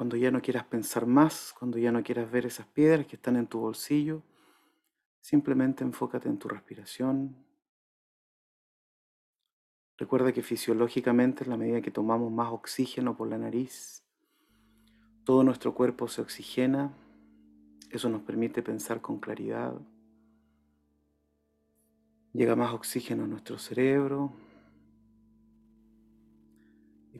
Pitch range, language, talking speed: 110-135 Hz, Spanish, 120 wpm